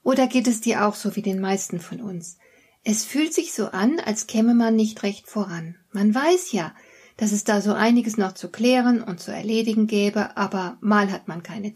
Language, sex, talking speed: German, female, 215 wpm